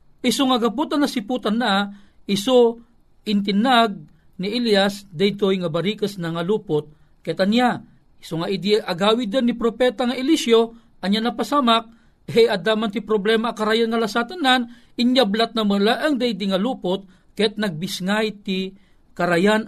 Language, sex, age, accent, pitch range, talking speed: Filipino, male, 40-59, native, 185-240 Hz, 140 wpm